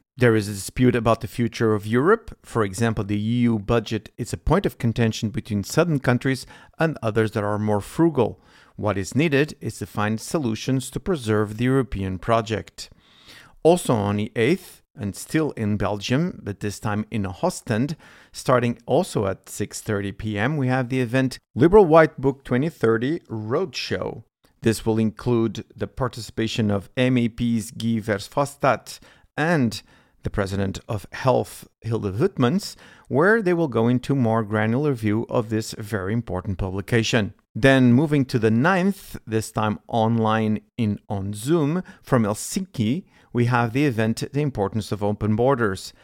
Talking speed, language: 155 wpm, English